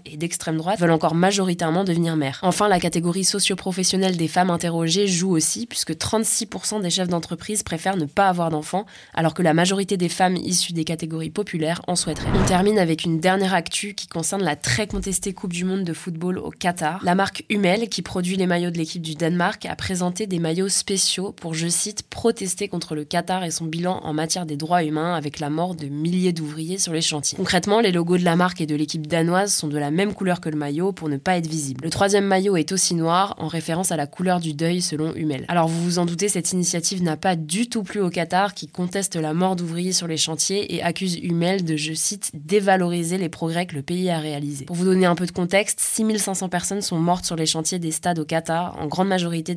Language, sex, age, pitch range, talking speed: French, female, 20-39, 160-185 Hz, 230 wpm